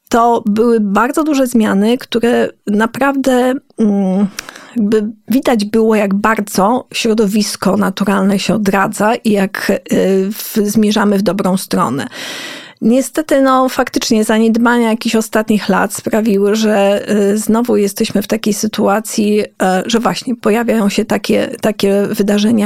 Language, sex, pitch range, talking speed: Polish, female, 200-230 Hz, 115 wpm